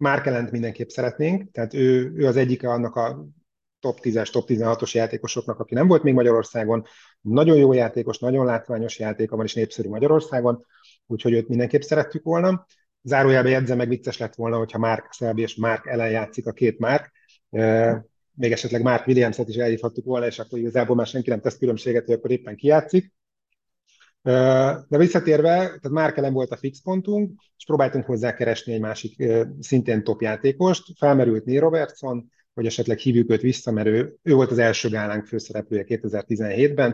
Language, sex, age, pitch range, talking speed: Hungarian, male, 30-49, 115-135 Hz, 170 wpm